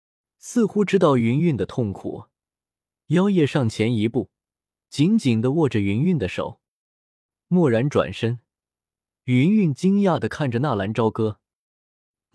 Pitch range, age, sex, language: 100-155 Hz, 20-39, male, Chinese